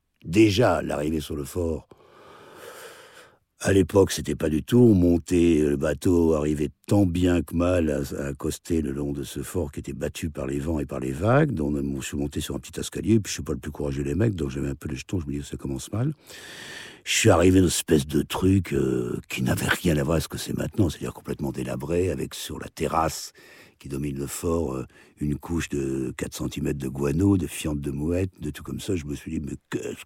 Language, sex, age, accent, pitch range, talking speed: French, male, 60-79, French, 70-95 Hz, 240 wpm